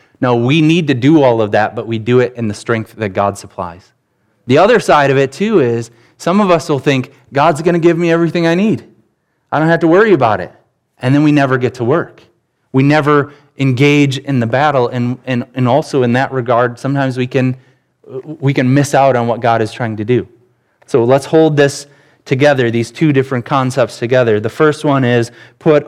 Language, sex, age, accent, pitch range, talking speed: English, male, 20-39, American, 120-145 Hz, 215 wpm